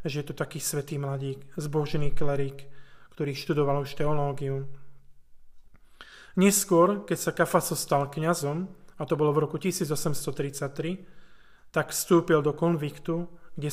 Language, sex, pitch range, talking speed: Slovak, male, 145-170 Hz, 125 wpm